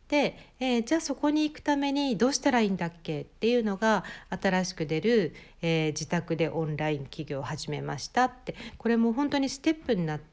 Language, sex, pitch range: Japanese, female, 155-220 Hz